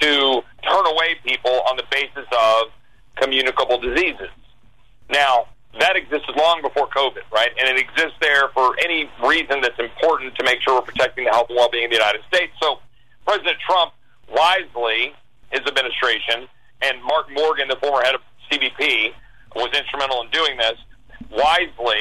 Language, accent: English, American